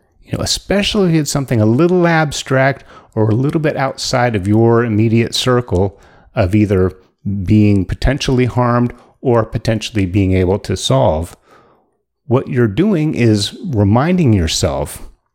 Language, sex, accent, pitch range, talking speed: English, male, American, 105-140 Hz, 130 wpm